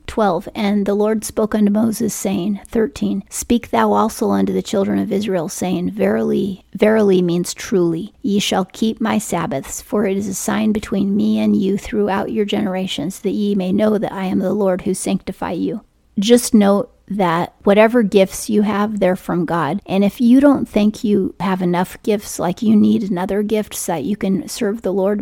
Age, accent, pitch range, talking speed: 30-49, American, 190-215 Hz, 195 wpm